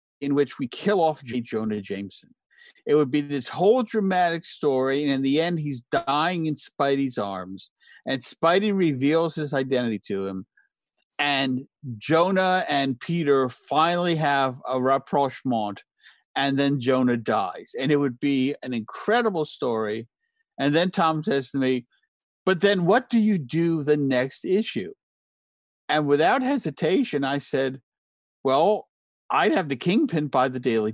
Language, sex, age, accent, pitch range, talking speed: English, male, 50-69, American, 135-195 Hz, 150 wpm